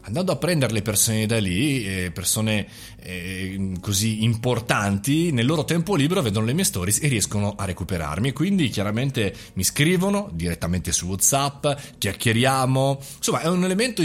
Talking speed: 145 wpm